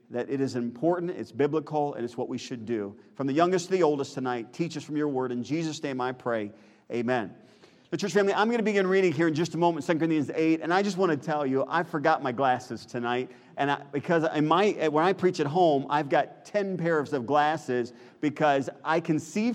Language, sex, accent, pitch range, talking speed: English, male, American, 135-170 Hz, 240 wpm